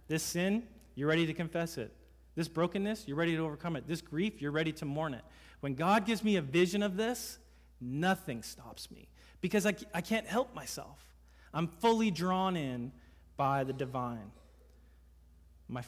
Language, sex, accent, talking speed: English, male, American, 175 wpm